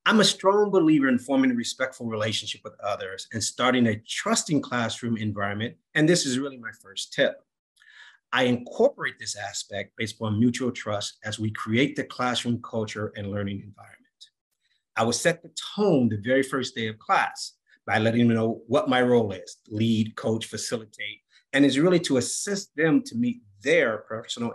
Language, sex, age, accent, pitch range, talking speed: English, male, 30-49, American, 110-160 Hz, 180 wpm